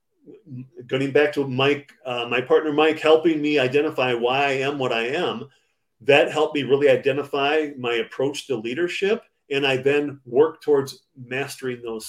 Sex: male